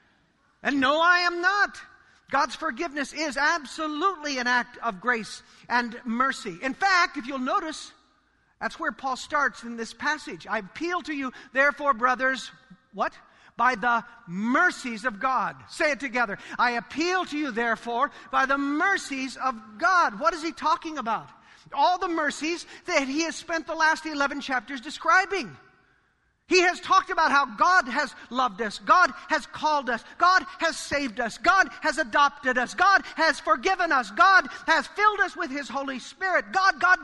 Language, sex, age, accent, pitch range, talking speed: English, male, 50-69, American, 260-355 Hz, 170 wpm